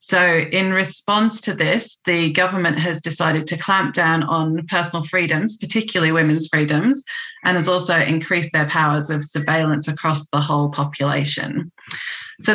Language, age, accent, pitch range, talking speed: English, 30-49, British, 160-190 Hz, 150 wpm